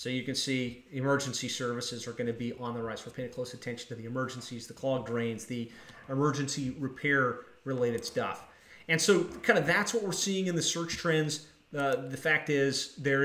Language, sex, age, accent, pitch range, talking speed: English, male, 30-49, American, 130-160 Hz, 200 wpm